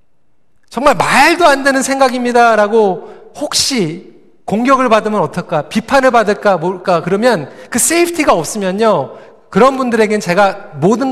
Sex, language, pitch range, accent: male, Korean, 200-275 Hz, native